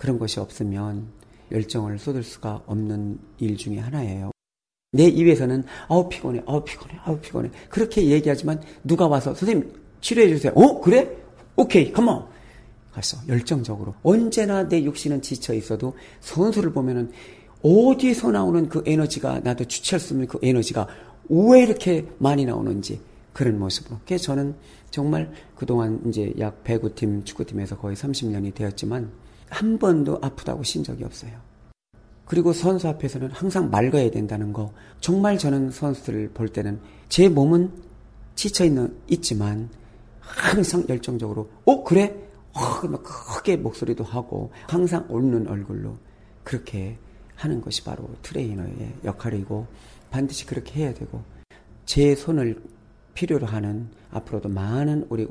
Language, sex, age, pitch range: Korean, male, 40-59, 110-150 Hz